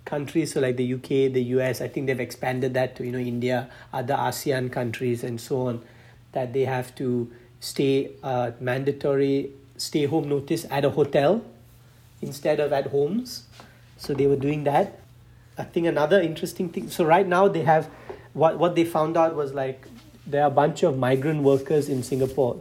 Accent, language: Indian, English